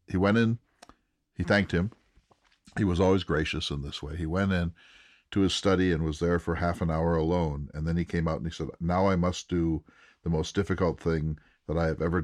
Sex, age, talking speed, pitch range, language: male, 50-69, 230 wpm, 80-95 Hz, English